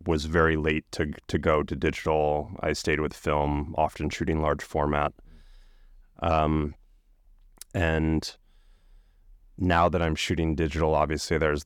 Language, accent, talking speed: English, American, 130 wpm